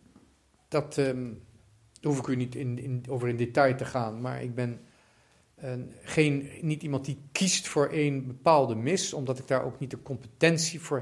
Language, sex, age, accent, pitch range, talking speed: Dutch, male, 50-69, Dutch, 130-155 Hz, 190 wpm